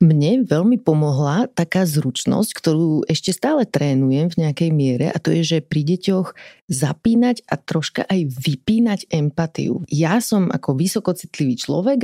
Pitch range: 155-195 Hz